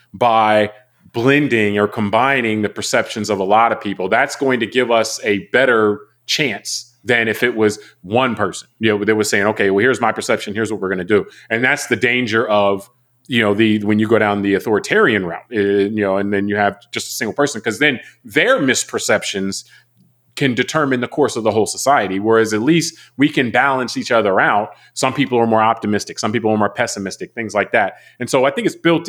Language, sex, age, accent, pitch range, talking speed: English, male, 30-49, American, 105-130 Hz, 215 wpm